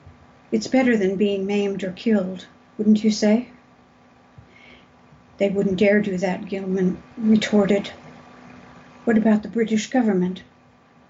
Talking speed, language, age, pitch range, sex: 120 wpm, English, 60-79, 185-215 Hz, female